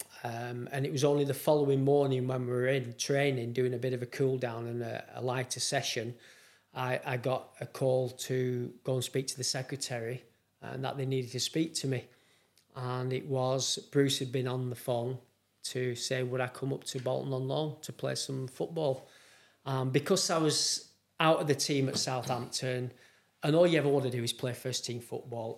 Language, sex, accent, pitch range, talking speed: English, male, British, 125-135 Hz, 210 wpm